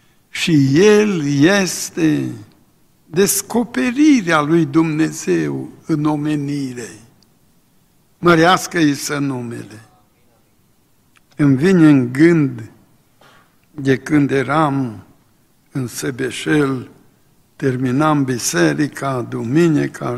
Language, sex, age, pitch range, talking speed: Romanian, male, 60-79, 120-155 Hz, 70 wpm